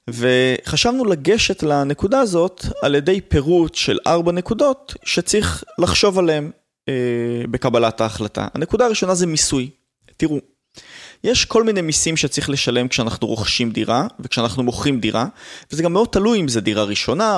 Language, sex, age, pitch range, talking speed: Hebrew, male, 20-39, 125-175 Hz, 140 wpm